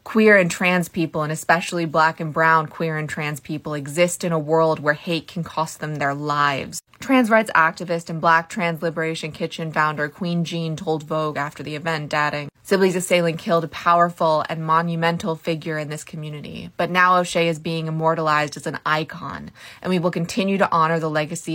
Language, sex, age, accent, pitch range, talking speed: English, female, 20-39, American, 155-180 Hz, 190 wpm